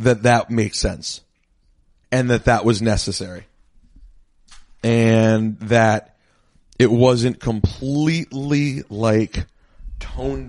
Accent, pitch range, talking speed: American, 105-130 Hz, 90 wpm